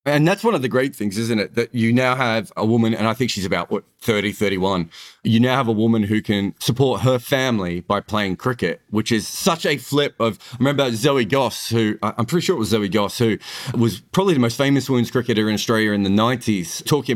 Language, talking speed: English, 240 wpm